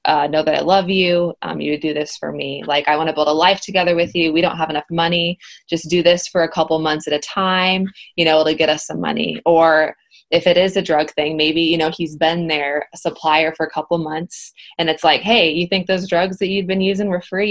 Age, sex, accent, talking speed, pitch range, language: 20-39, female, American, 265 wpm, 155-175 Hz, English